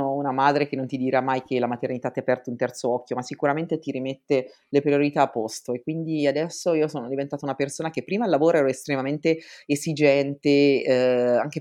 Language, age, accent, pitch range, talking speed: Italian, 30-49, native, 120-140 Hz, 210 wpm